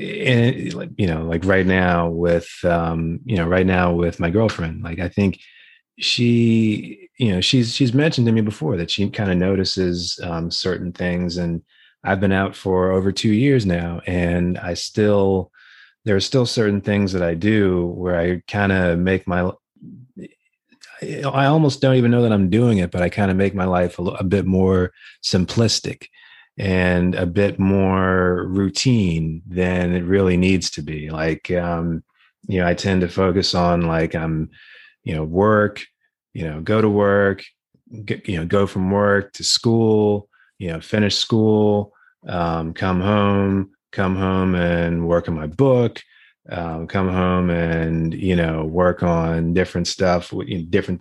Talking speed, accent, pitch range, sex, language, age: 175 wpm, American, 85-100 Hz, male, English, 30-49